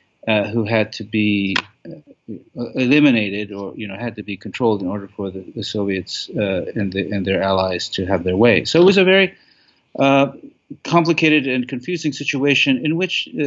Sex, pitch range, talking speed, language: male, 115-145 Hz, 185 wpm, English